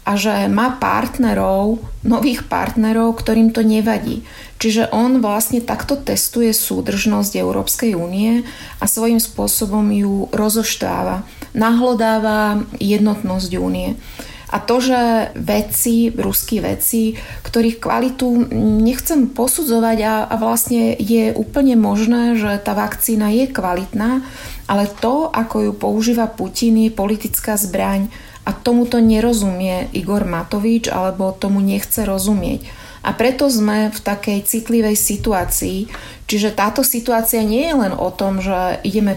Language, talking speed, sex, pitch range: Slovak, 125 wpm, female, 195-235 Hz